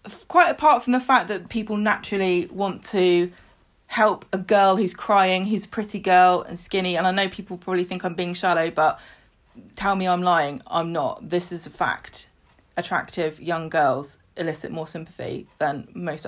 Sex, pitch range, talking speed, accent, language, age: female, 180-225 Hz, 180 wpm, British, English, 20-39